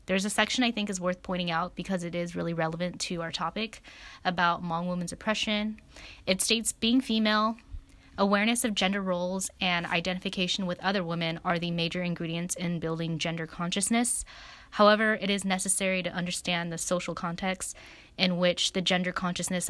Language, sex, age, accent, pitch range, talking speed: English, female, 10-29, American, 175-200 Hz, 170 wpm